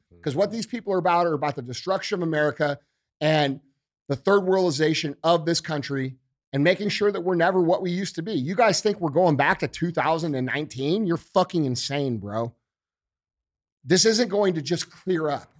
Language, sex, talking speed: English, male, 190 wpm